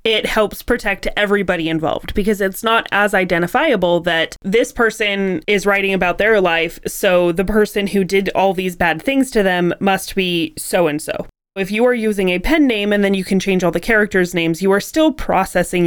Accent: American